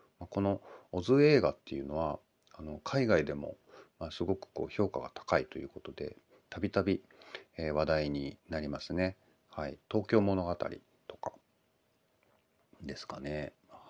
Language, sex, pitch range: Japanese, male, 75-100 Hz